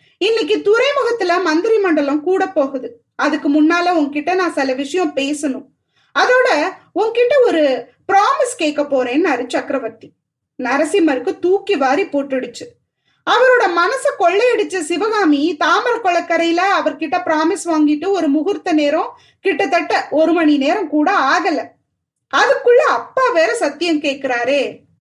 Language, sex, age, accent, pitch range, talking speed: Tamil, female, 20-39, native, 295-375 Hz, 110 wpm